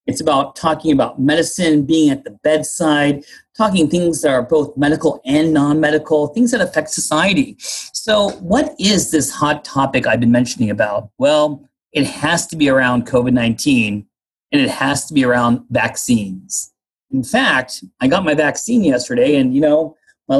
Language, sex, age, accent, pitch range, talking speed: English, male, 30-49, American, 130-190 Hz, 165 wpm